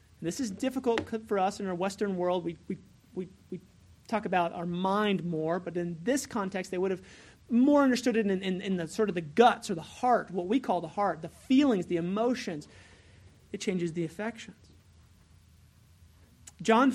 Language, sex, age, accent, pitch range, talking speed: English, male, 30-49, American, 170-235 Hz, 190 wpm